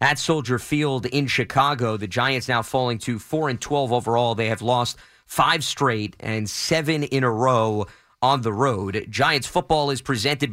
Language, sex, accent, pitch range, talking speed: English, male, American, 120-145 Hz, 170 wpm